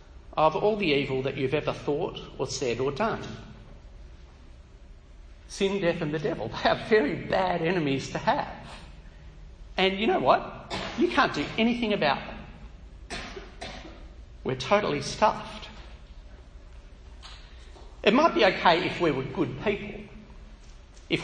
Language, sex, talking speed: English, male, 135 wpm